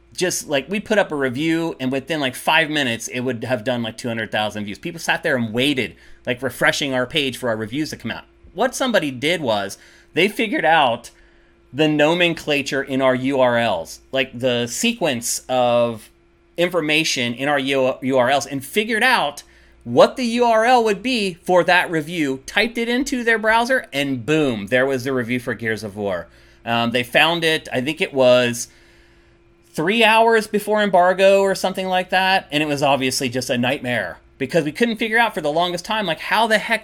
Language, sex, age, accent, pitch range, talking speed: English, male, 30-49, American, 125-185 Hz, 190 wpm